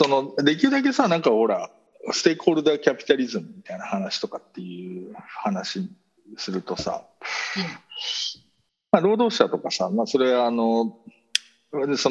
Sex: male